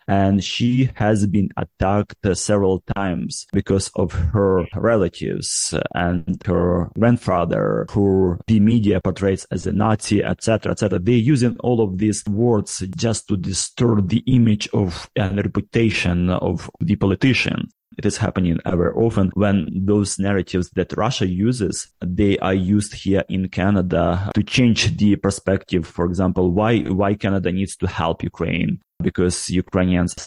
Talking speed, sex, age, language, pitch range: 145 wpm, male, 30-49, Ukrainian, 90-105 Hz